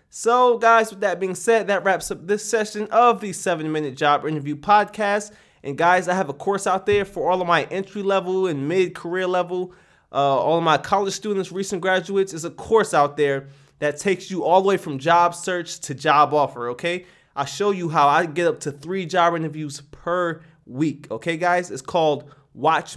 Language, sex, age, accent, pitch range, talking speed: English, male, 20-39, American, 150-200 Hz, 200 wpm